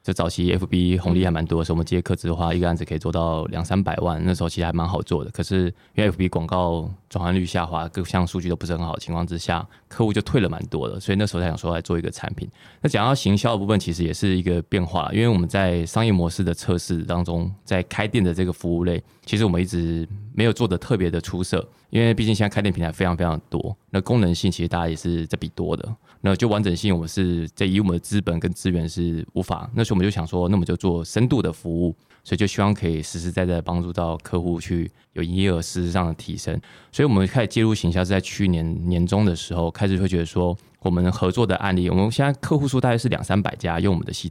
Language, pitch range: Chinese, 85-100 Hz